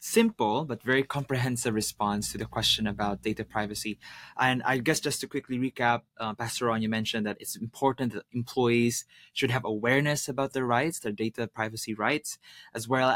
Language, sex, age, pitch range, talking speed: English, male, 20-39, 110-140 Hz, 180 wpm